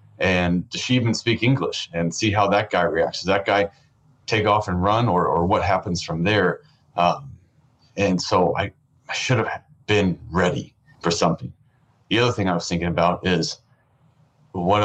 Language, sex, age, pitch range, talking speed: English, male, 30-49, 90-120 Hz, 180 wpm